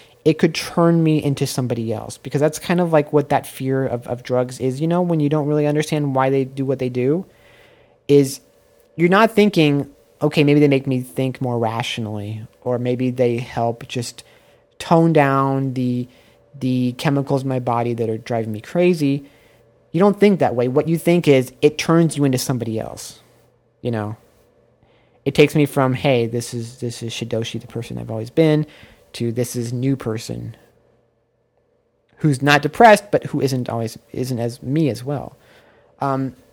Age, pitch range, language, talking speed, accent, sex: 30-49, 120-155 Hz, English, 185 wpm, American, male